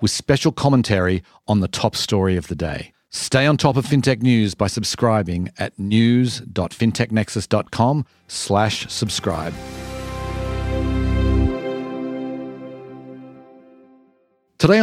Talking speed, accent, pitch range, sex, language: 95 wpm, Australian, 90-115 Hz, male, English